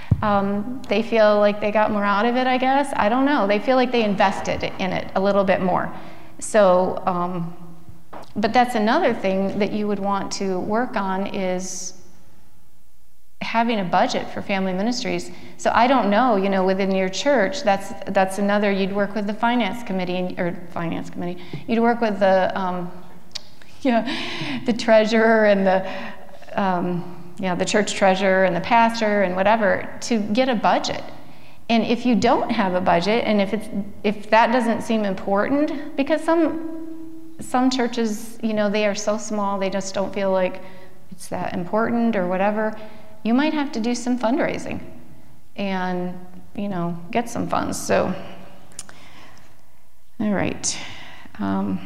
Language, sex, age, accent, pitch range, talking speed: English, female, 40-59, American, 185-230 Hz, 165 wpm